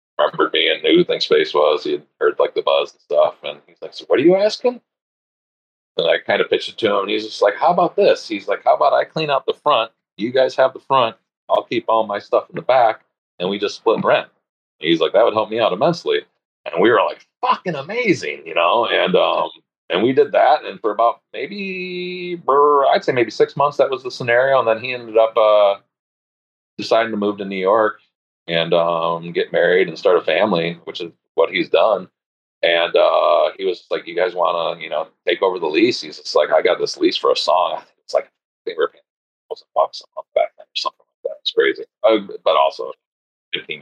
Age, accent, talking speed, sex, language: 40-59, American, 240 wpm, male, English